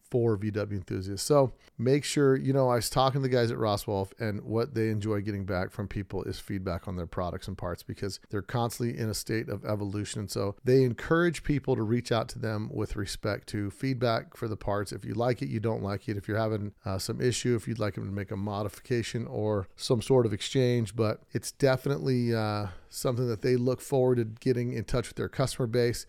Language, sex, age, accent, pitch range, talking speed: English, male, 40-59, American, 105-125 Hz, 230 wpm